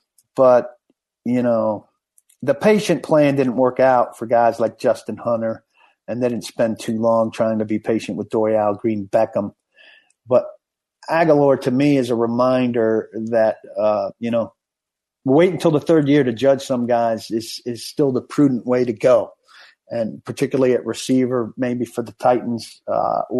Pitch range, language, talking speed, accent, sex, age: 115-140 Hz, English, 165 wpm, American, male, 50-69